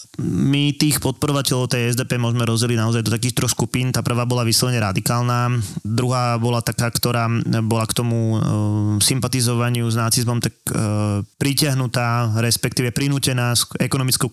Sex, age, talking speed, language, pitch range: male, 20-39, 140 wpm, Slovak, 115-135 Hz